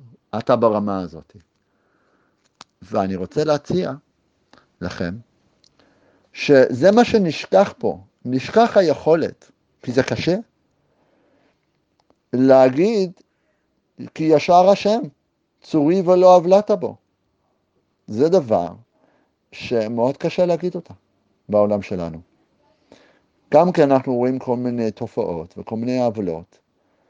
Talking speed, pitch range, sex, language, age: 95 wpm, 110-180 Hz, male, Hebrew, 50-69